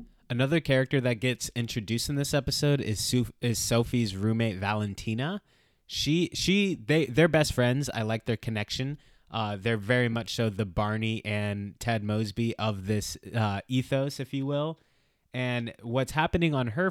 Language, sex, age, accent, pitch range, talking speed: English, male, 20-39, American, 105-130 Hz, 160 wpm